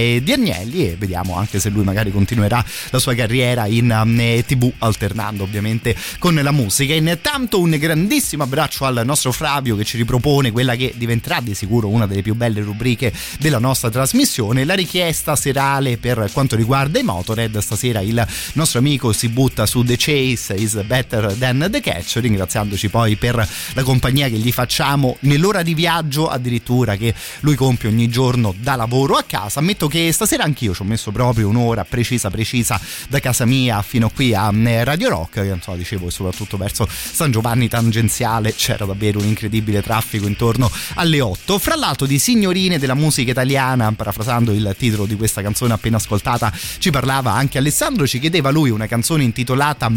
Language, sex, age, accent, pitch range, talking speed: Italian, male, 30-49, native, 110-140 Hz, 175 wpm